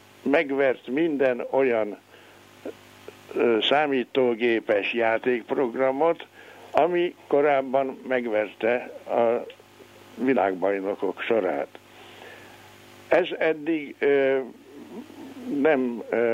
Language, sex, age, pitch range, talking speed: Hungarian, male, 60-79, 110-140 Hz, 50 wpm